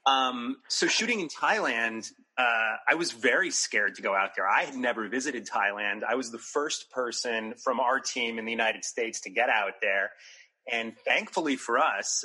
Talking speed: 190 wpm